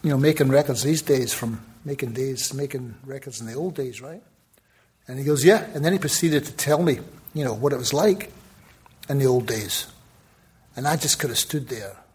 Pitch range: 135-180 Hz